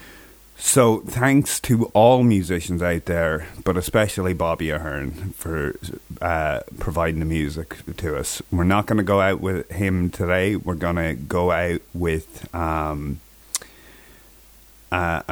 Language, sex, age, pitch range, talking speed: English, male, 30-49, 80-95 Hz, 135 wpm